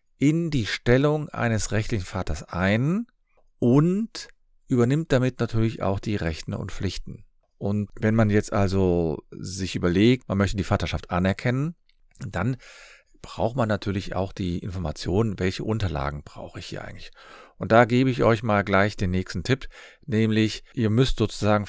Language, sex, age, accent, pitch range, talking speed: German, male, 50-69, German, 90-125 Hz, 150 wpm